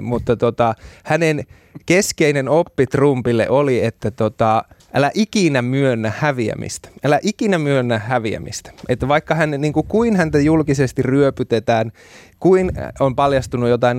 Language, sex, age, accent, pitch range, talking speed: Finnish, male, 20-39, native, 110-145 Hz, 130 wpm